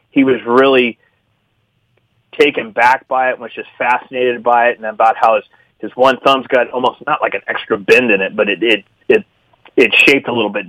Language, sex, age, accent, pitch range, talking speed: English, male, 30-49, American, 110-130 Hz, 215 wpm